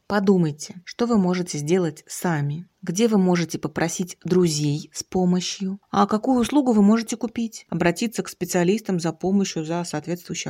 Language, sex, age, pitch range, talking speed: Russian, female, 30-49, 160-200 Hz, 150 wpm